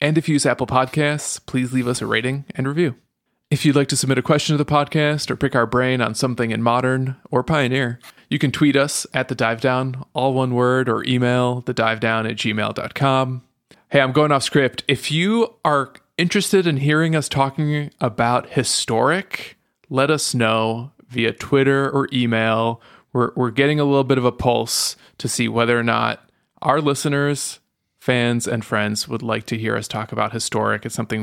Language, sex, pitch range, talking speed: English, male, 115-145 Hz, 195 wpm